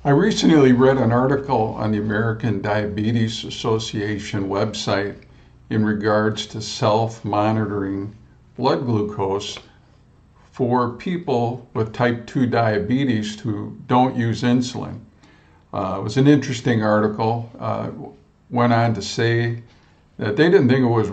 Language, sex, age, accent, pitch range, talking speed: English, male, 50-69, American, 105-130 Hz, 125 wpm